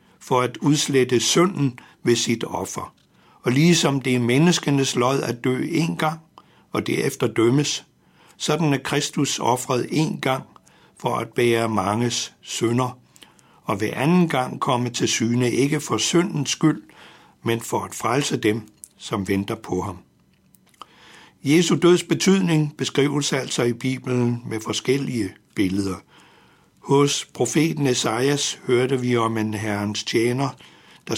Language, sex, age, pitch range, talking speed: Danish, male, 60-79, 115-145 Hz, 135 wpm